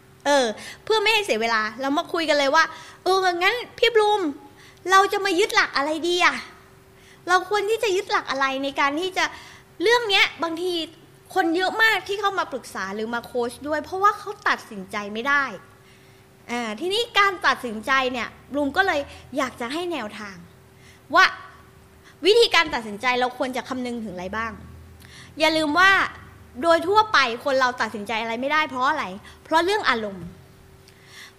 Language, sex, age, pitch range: Thai, female, 20-39, 245-365 Hz